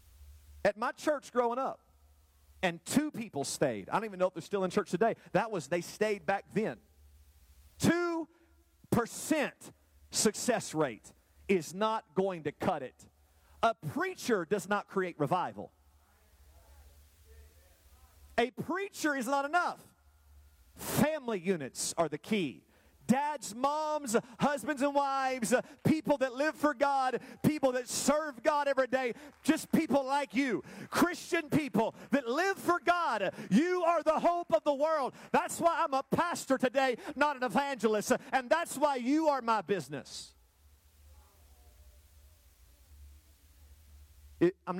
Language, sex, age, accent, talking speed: English, male, 40-59, American, 135 wpm